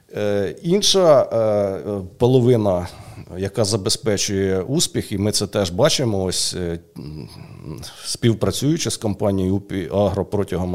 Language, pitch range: Ukrainian, 100-125 Hz